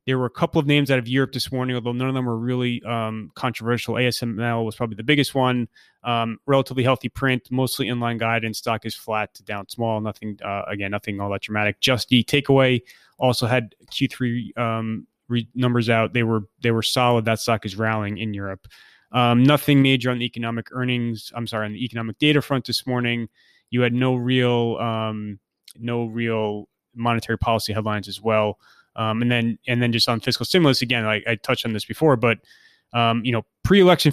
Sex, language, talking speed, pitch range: male, English, 200 wpm, 110-130 Hz